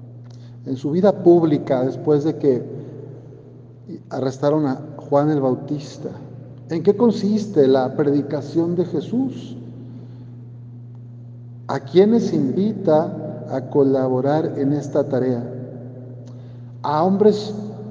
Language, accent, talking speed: Spanish, Mexican, 95 wpm